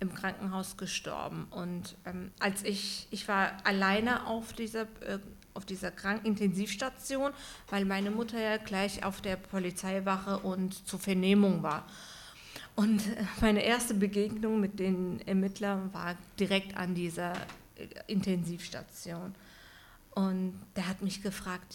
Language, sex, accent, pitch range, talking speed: German, female, German, 190-220 Hz, 130 wpm